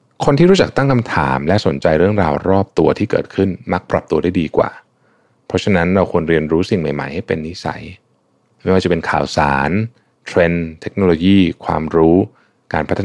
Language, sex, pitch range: Thai, male, 80-100 Hz